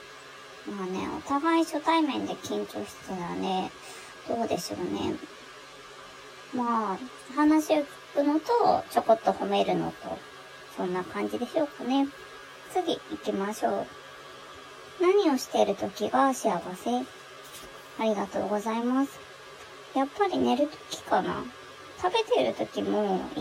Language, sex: Japanese, male